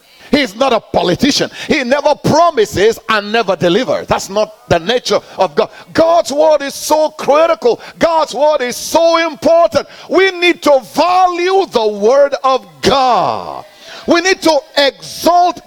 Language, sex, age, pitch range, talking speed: English, male, 50-69, 235-320 Hz, 145 wpm